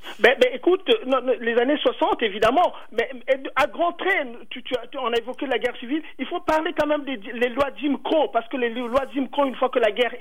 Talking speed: 245 wpm